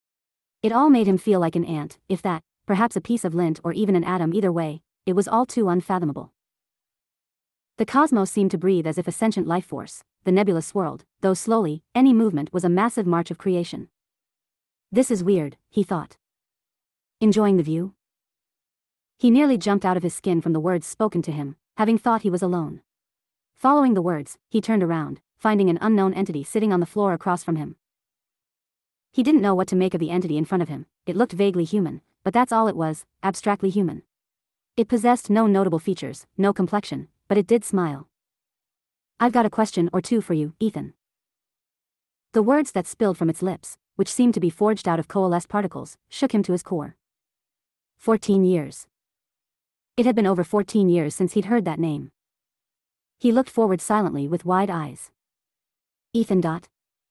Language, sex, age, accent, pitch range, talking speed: English, female, 40-59, American, 170-215 Hz, 190 wpm